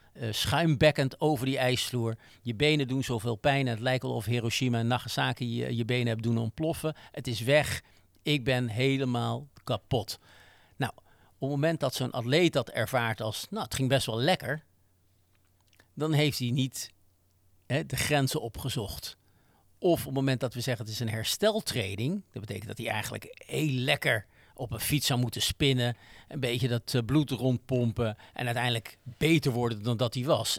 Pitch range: 115-140 Hz